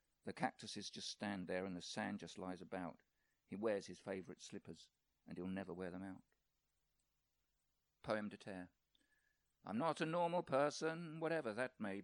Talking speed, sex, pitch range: 165 wpm, male, 130-200 Hz